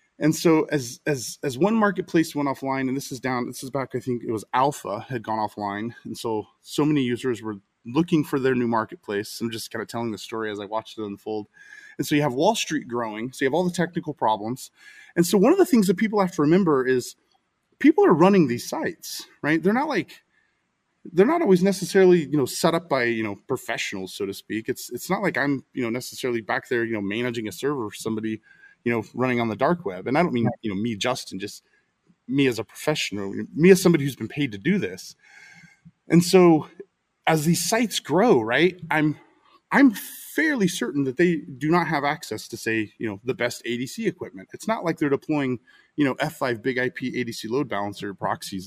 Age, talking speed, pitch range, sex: 20-39, 225 wpm, 115-170 Hz, male